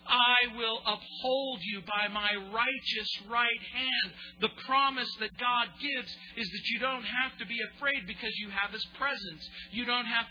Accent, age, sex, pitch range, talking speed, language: American, 50-69, male, 175-245 Hz, 175 wpm, English